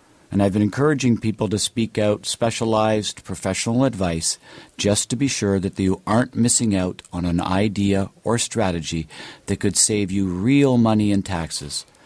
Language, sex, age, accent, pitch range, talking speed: English, male, 50-69, American, 95-115 Hz, 165 wpm